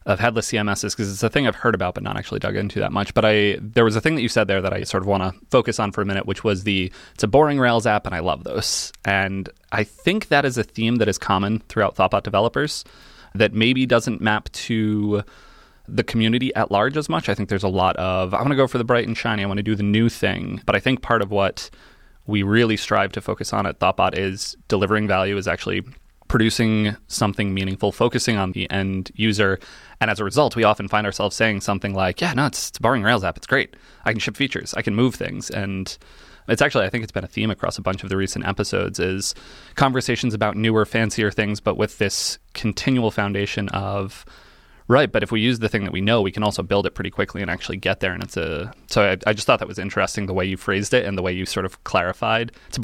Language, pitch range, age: English, 100-115 Hz, 20-39